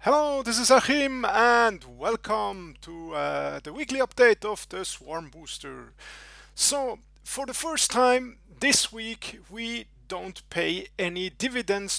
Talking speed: 135 wpm